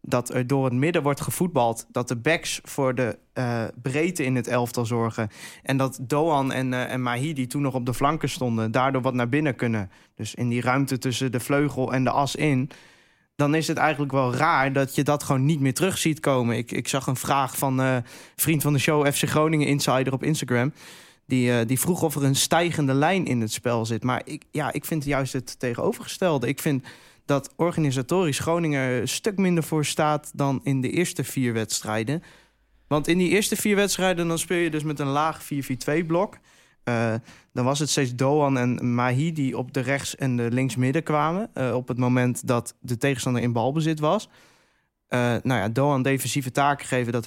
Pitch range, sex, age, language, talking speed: 125-150 Hz, male, 20-39, Dutch, 210 wpm